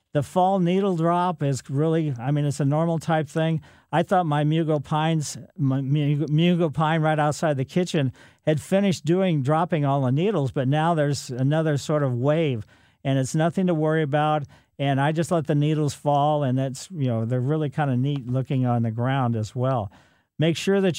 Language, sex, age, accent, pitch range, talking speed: English, male, 50-69, American, 135-160 Hz, 200 wpm